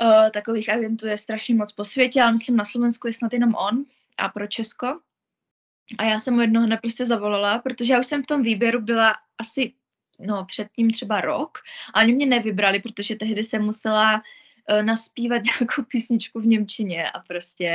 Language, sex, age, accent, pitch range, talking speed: Czech, female, 20-39, native, 215-250 Hz, 185 wpm